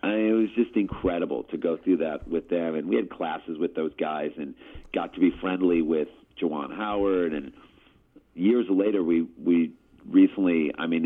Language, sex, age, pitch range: English, male, 40-59, 80-110 Hz